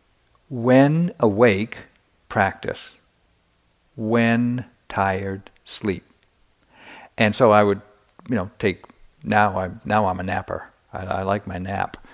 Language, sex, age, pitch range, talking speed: English, male, 50-69, 95-120 Hz, 120 wpm